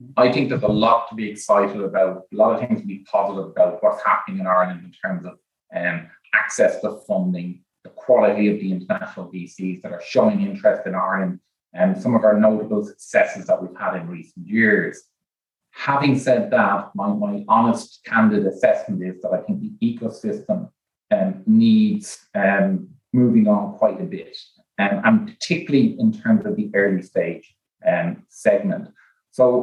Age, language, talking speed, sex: 30-49, English, 175 wpm, male